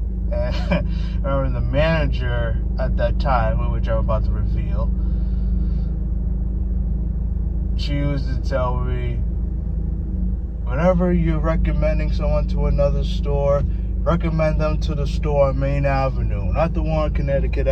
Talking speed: 120 wpm